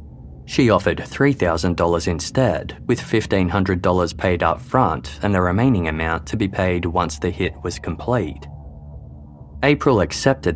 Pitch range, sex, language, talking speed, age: 75-105 Hz, male, English, 130 wpm, 20-39